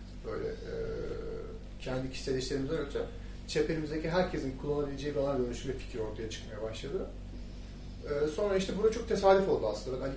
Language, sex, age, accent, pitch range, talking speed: Turkish, male, 40-59, native, 110-175 Hz, 155 wpm